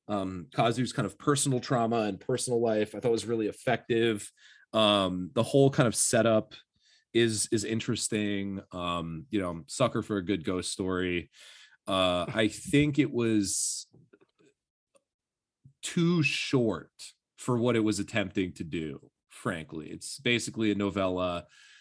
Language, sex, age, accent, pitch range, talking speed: English, male, 30-49, American, 95-120 Hz, 140 wpm